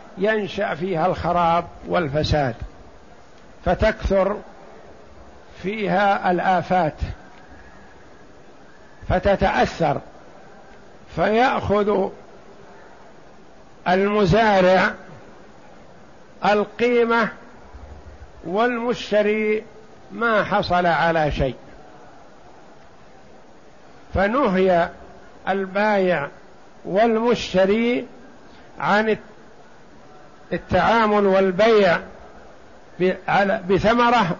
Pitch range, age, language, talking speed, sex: 180-210 Hz, 60-79, Arabic, 40 wpm, male